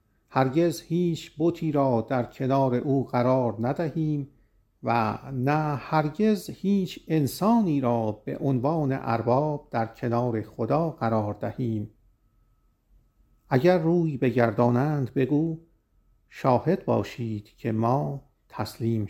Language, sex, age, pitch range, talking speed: Persian, male, 50-69, 115-150 Hz, 100 wpm